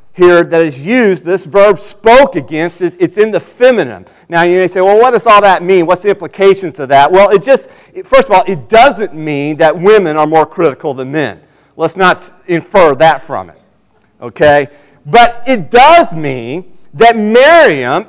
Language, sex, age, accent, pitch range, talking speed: English, male, 40-59, American, 165-215 Hz, 185 wpm